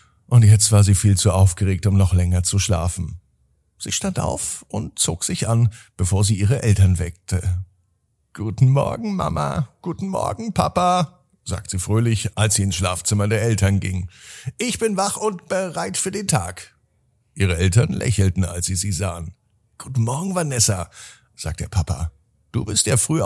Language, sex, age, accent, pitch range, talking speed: German, male, 50-69, German, 95-130 Hz, 170 wpm